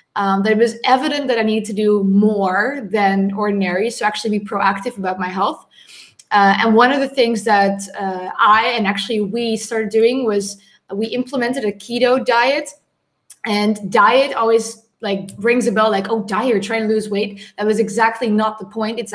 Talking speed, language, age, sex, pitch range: 195 wpm, English, 20-39, female, 200-235 Hz